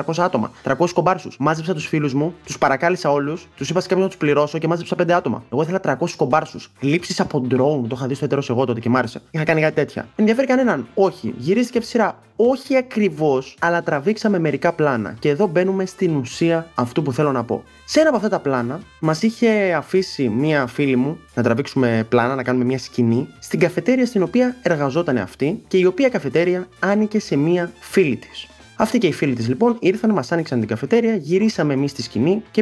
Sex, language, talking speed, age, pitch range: male, Greek, 210 wpm, 20-39, 135-190 Hz